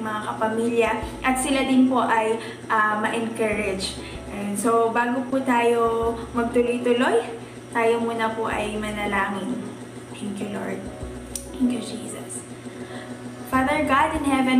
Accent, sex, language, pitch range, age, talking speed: native, female, Filipino, 220-240 Hz, 20-39, 120 wpm